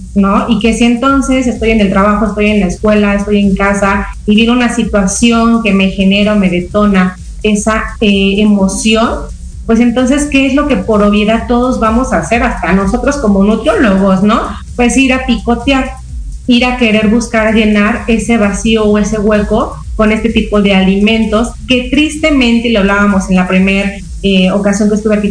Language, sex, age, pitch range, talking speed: Spanish, female, 30-49, 195-225 Hz, 185 wpm